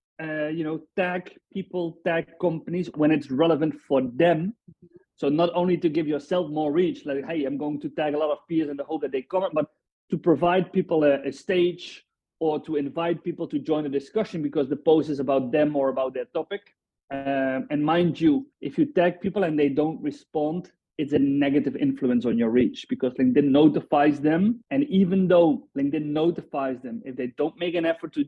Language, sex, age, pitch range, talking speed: English, male, 30-49, 145-180 Hz, 205 wpm